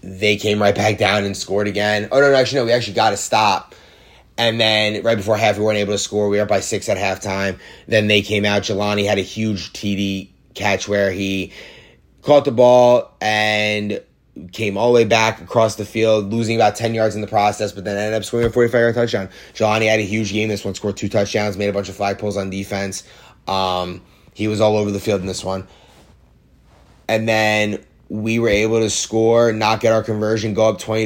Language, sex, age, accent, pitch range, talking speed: English, male, 20-39, American, 100-110 Hz, 225 wpm